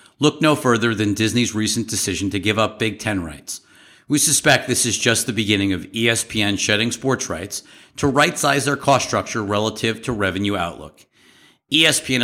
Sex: male